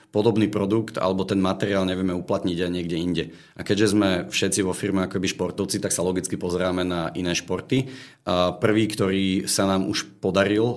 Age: 40-59